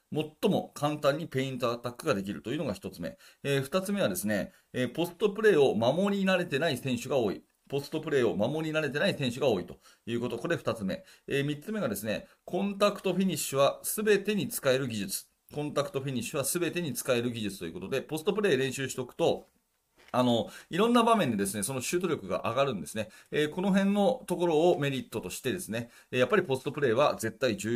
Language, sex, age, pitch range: Japanese, male, 40-59, 115-170 Hz